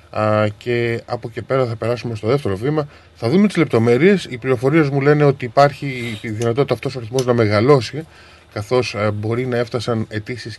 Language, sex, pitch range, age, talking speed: Greek, male, 110-150 Hz, 20-39, 175 wpm